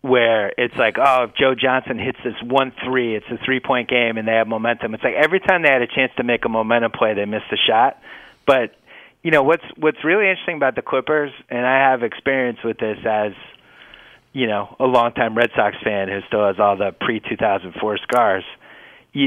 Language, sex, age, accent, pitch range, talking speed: English, male, 30-49, American, 120-140 Hz, 225 wpm